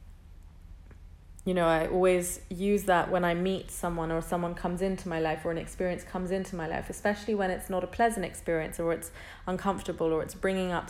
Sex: female